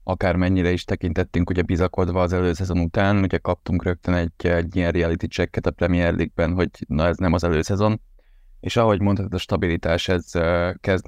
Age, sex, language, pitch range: 20-39, male, Hungarian, 85-95 Hz